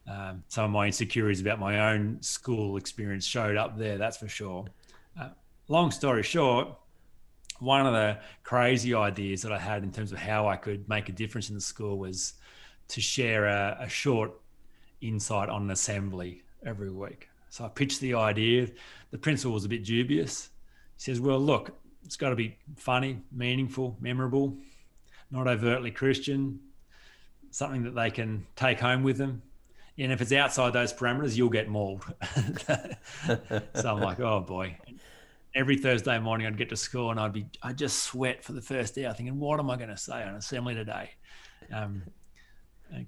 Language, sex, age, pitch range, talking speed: English, male, 30-49, 105-125 Hz, 180 wpm